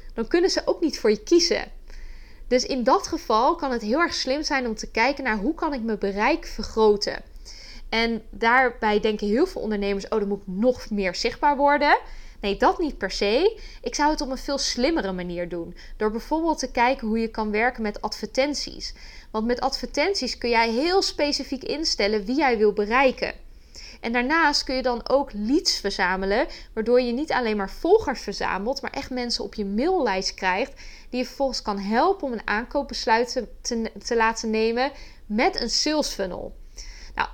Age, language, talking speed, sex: 20-39, Dutch, 190 wpm, female